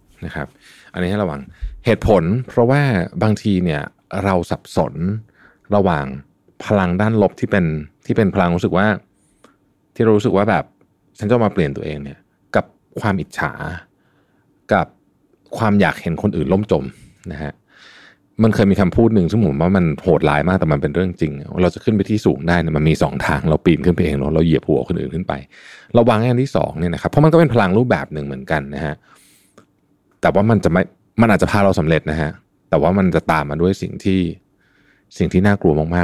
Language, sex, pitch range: Thai, male, 80-105 Hz